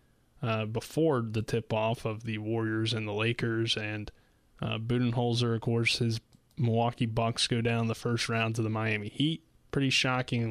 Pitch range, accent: 115-125 Hz, American